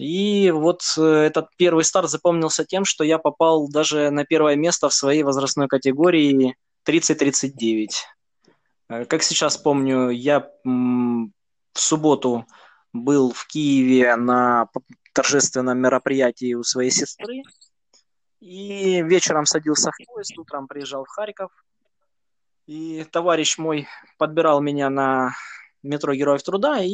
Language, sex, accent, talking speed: Russian, male, native, 115 wpm